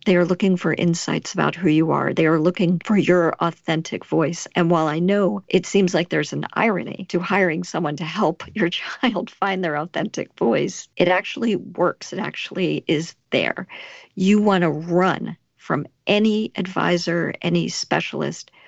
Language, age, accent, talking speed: English, 50-69, American, 170 wpm